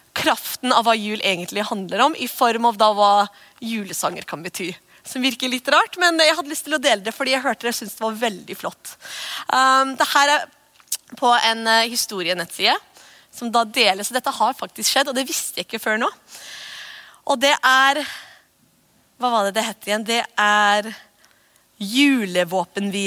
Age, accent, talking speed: 20-39, Swedish, 190 wpm